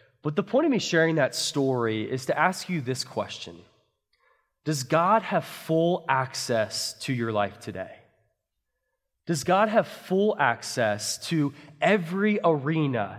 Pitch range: 135-180 Hz